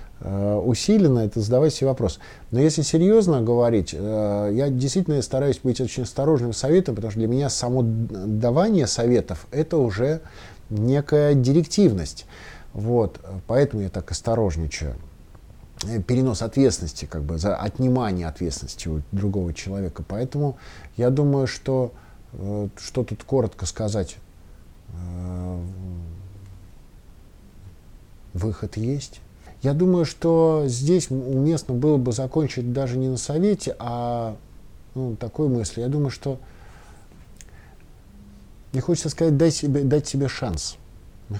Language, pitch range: Russian, 95-135 Hz